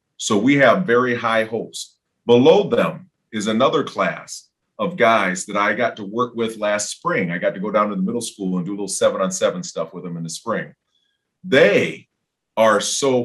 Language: English